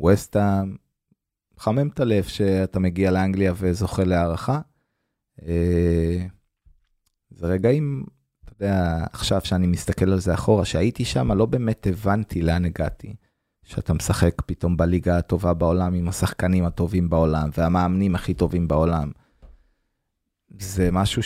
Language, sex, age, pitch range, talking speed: Hebrew, male, 20-39, 90-110 Hz, 120 wpm